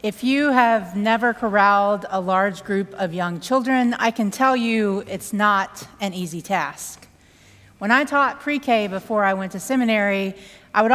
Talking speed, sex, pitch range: 170 wpm, female, 200-260 Hz